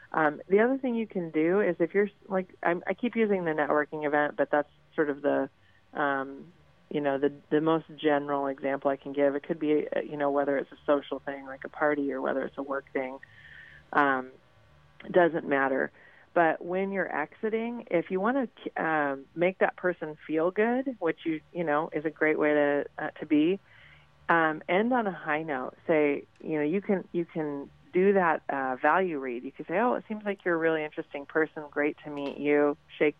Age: 30-49